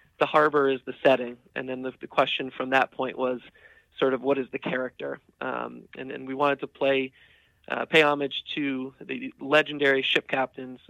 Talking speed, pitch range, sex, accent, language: 195 wpm, 130-145 Hz, male, American, English